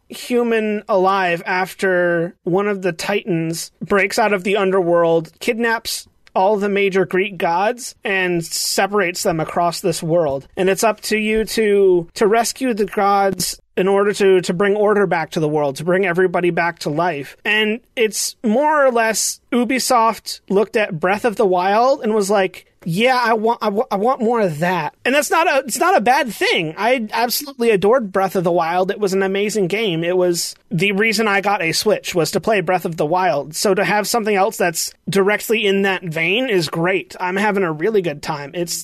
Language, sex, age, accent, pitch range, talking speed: English, male, 30-49, American, 175-210 Hz, 200 wpm